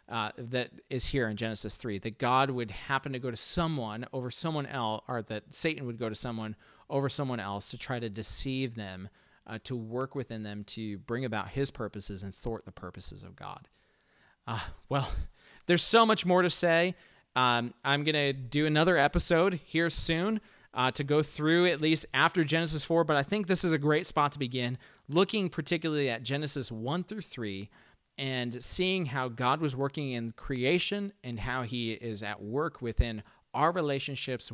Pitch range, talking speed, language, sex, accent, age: 115-150 Hz, 190 wpm, English, male, American, 30-49